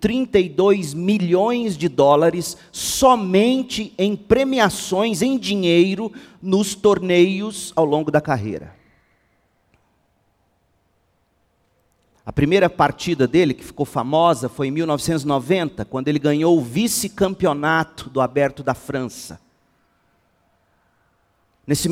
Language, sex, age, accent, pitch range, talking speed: Portuguese, male, 40-59, Brazilian, 125-195 Hz, 95 wpm